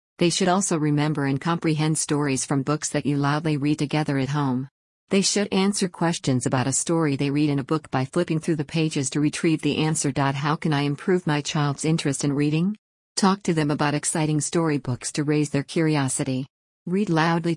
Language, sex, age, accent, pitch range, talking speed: English, female, 50-69, American, 145-165 Hz, 200 wpm